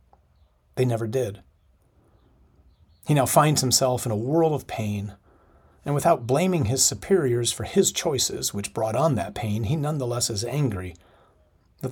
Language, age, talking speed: English, 40-59, 150 wpm